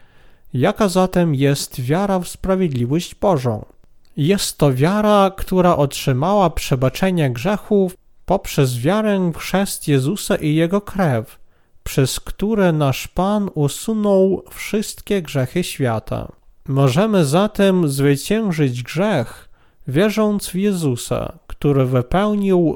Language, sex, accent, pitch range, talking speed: Polish, male, native, 135-190 Hz, 100 wpm